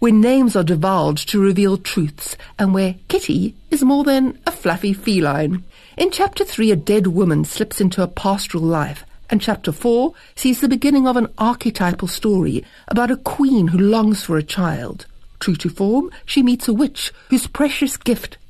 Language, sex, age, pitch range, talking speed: English, female, 60-79, 175-245 Hz, 180 wpm